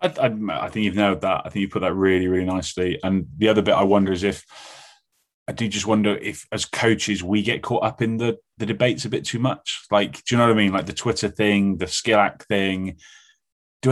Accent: British